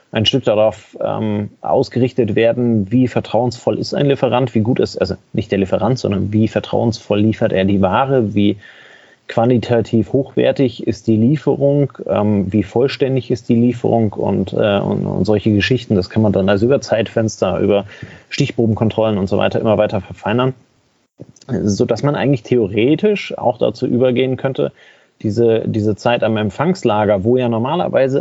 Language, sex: German, male